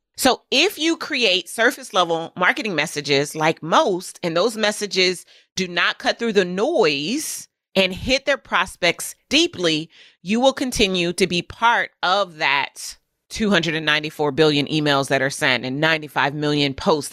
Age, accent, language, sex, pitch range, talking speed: 30-49, American, English, female, 150-210 Hz, 145 wpm